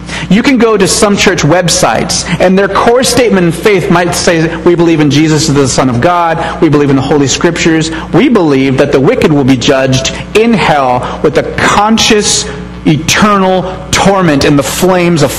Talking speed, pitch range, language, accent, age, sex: 190 wpm, 135-205 Hz, English, American, 40-59, male